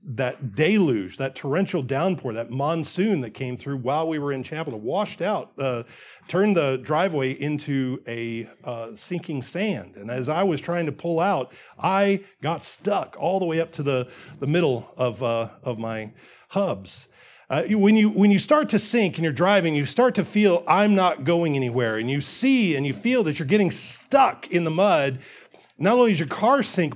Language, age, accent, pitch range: English, 40-59, American, 130-195 Hz